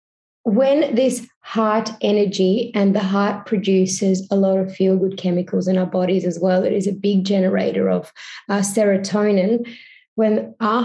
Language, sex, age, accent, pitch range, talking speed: English, female, 20-39, Australian, 190-220 Hz, 155 wpm